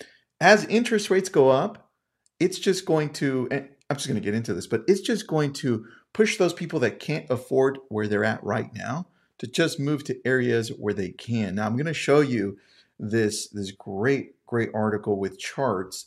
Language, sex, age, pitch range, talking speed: English, male, 40-59, 110-160 Hz, 200 wpm